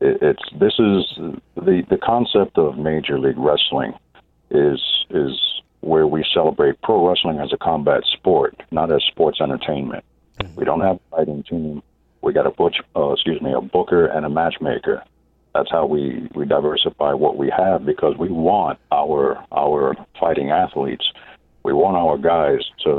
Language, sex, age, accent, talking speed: English, male, 60-79, American, 165 wpm